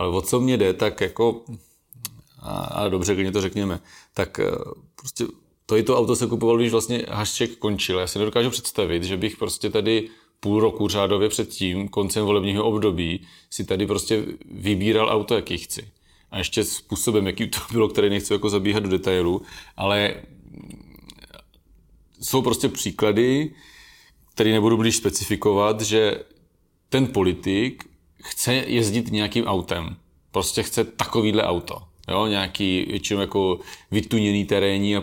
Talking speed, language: 145 wpm, Czech